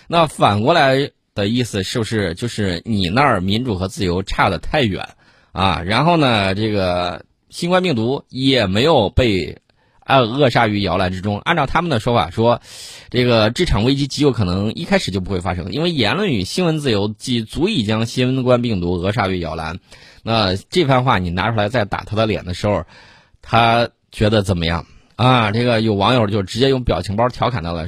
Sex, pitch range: male, 95-130 Hz